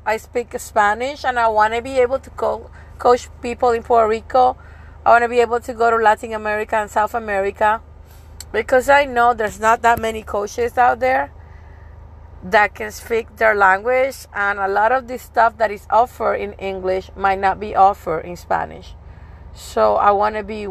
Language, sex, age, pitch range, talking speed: English, female, 30-49, 195-245 Hz, 185 wpm